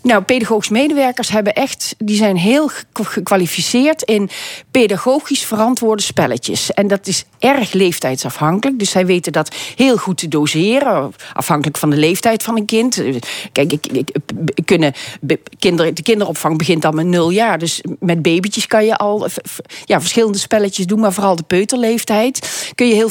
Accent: Dutch